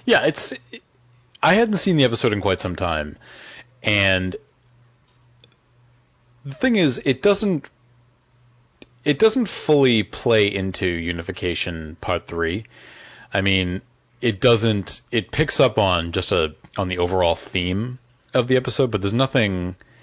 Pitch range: 85-120 Hz